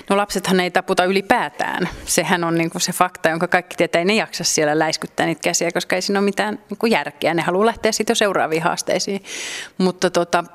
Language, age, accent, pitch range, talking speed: Finnish, 30-49, native, 165-210 Hz, 200 wpm